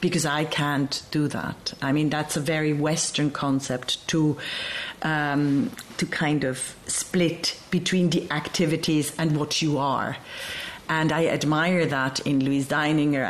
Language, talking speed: German, 145 wpm